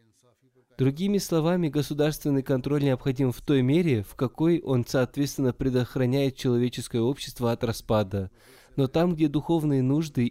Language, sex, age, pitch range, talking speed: Russian, male, 20-39, 125-150 Hz, 130 wpm